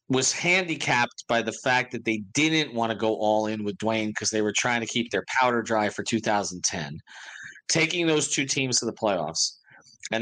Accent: American